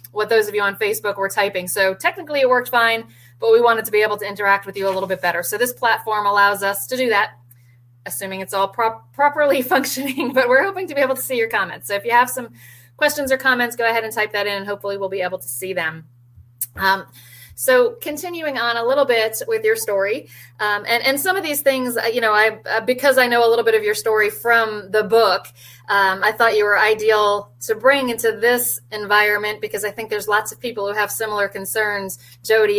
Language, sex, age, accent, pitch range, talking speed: English, female, 30-49, American, 195-235 Hz, 235 wpm